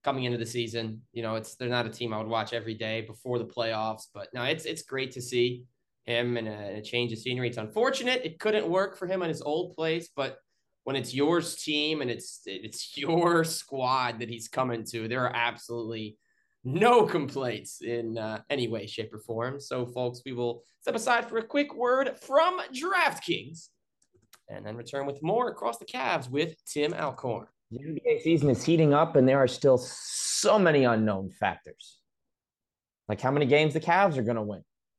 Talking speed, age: 200 wpm, 20-39